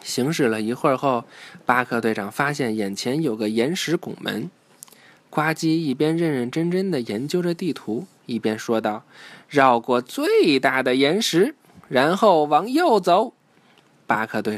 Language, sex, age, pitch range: Chinese, male, 20-39, 115-165 Hz